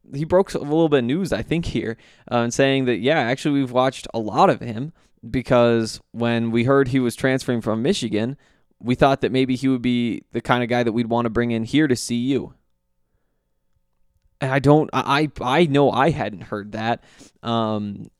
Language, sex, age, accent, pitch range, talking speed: English, male, 20-39, American, 110-130 Hz, 210 wpm